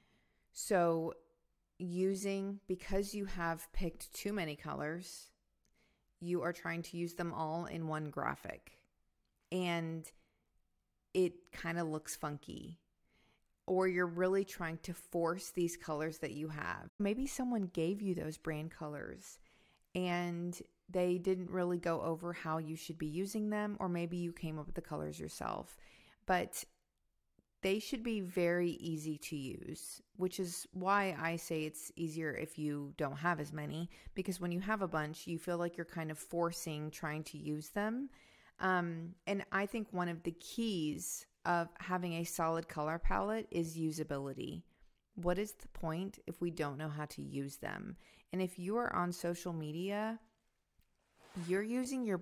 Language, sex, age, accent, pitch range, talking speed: English, female, 40-59, American, 160-190 Hz, 160 wpm